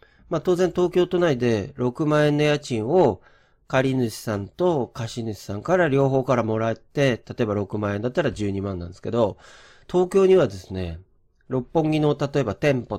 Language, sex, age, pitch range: Japanese, male, 40-59, 100-145 Hz